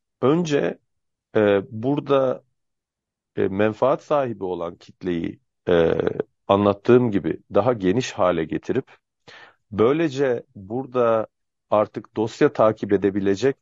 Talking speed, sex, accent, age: 95 wpm, male, native, 40-59